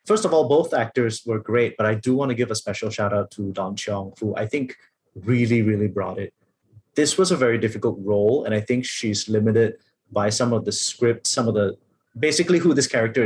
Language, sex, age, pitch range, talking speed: English, male, 30-49, 105-130 Hz, 225 wpm